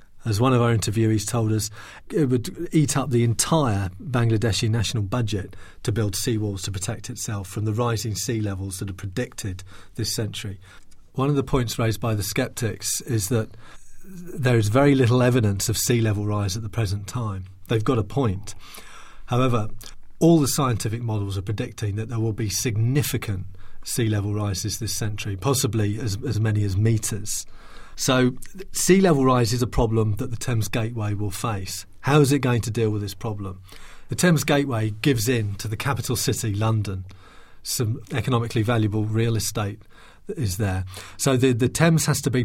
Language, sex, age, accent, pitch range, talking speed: English, male, 40-59, British, 105-125 Hz, 180 wpm